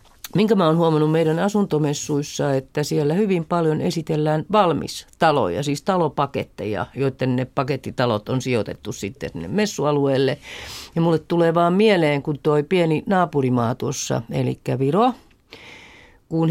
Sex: female